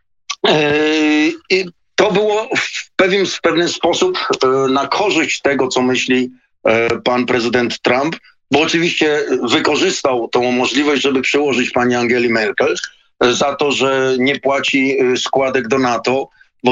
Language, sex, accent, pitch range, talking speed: Polish, male, native, 125-165 Hz, 120 wpm